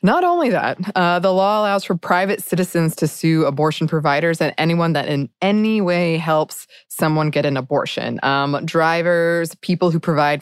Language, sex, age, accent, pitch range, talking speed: English, female, 20-39, American, 145-190 Hz, 175 wpm